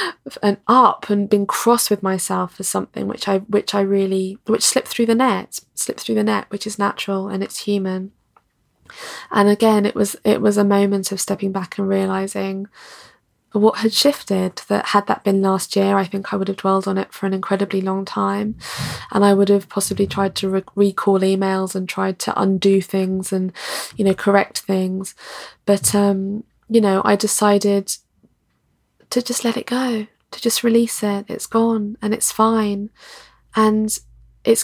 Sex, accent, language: female, British, English